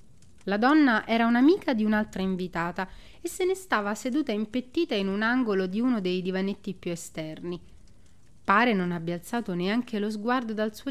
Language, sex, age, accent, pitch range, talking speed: Italian, female, 30-49, native, 195-250 Hz, 170 wpm